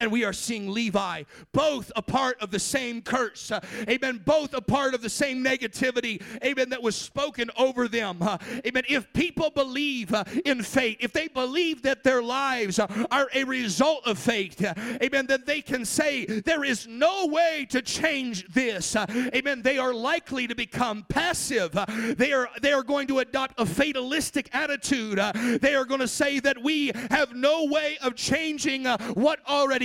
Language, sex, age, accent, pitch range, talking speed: English, male, 50-69, American, 240-305 Hz, 175 wpm